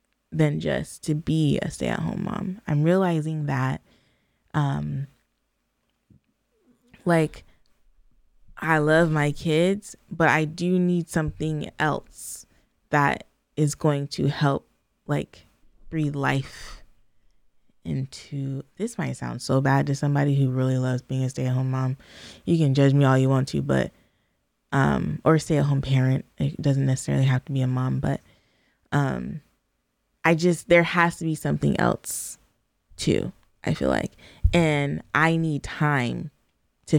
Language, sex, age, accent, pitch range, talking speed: English, female, 20-39, American, 130-155 Hz, 140 wpm